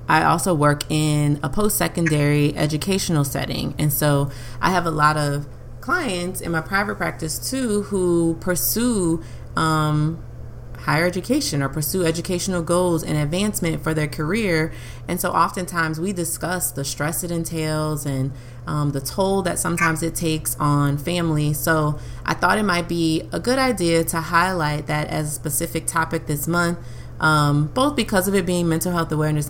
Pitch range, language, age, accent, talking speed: 145-175 Hz, English, 30-49, American, 165 wpm